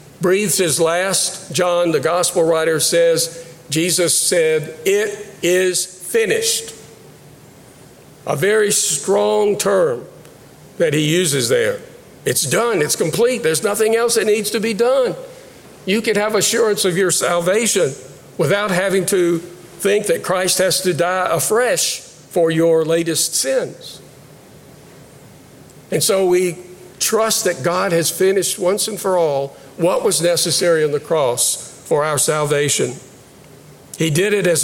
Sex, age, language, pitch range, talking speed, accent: male, 50-69, English, 165-210 Hz, 135 wpm, American